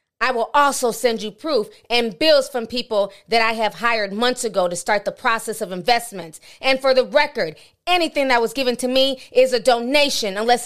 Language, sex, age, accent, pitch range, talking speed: English, female, 30-49, American, 175-240 Hz, 205 wpm